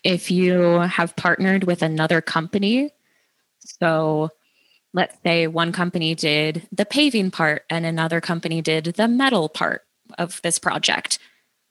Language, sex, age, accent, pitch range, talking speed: English, female, 20-39, American, 165-195 Hz, 135 wpm